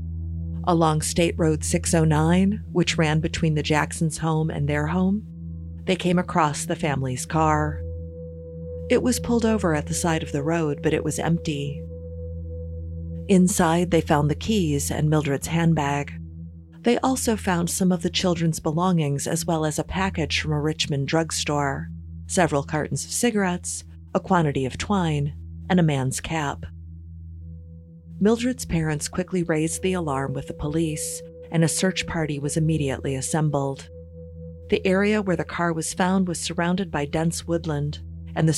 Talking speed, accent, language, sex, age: 155 wpm, American, English, female, 40-59